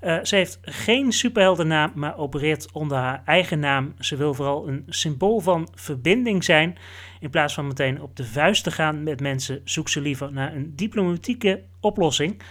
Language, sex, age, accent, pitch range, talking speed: Dutch, male, 30-49, Dutch, 130-180 Hz, 175 wpm